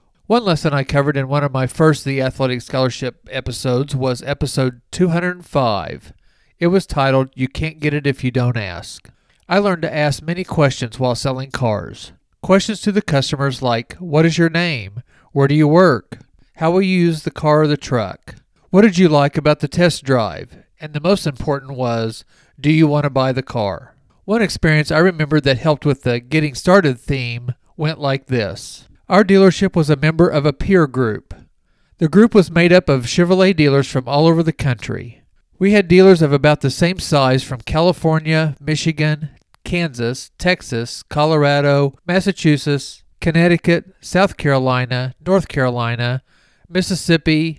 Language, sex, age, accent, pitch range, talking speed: English, male, 40-59, American, 130-170 Hz, 170 wpm